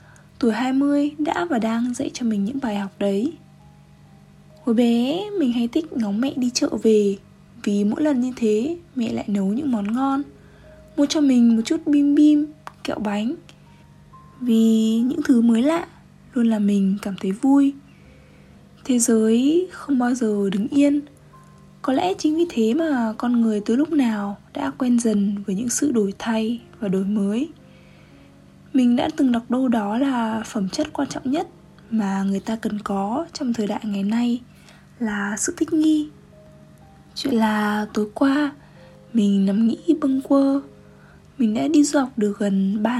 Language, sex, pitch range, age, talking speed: Vietnamese, female, 215-285 Hz, 20-39, 175 wpm